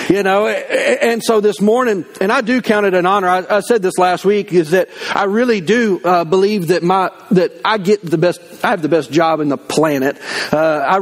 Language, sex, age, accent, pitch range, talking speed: English, male, 40-59, American, 180-225 Hz, 235 wpm